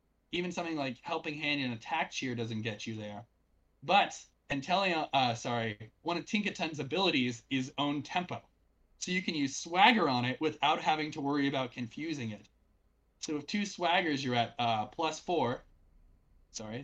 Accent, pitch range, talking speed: American, 115-160 Hz, 170 wpm